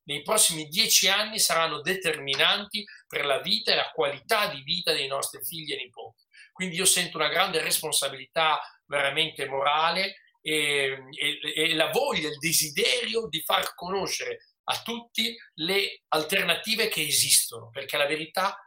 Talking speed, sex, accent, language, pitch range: 145 wpm, male, native, Italian, 155-215 Hz